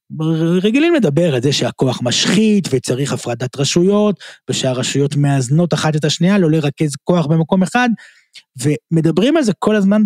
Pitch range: 135-185 Hz